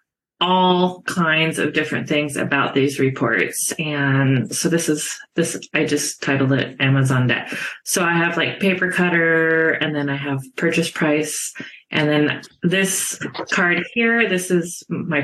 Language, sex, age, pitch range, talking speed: English, female, 30-49, 150-190 Hz, 155 wpm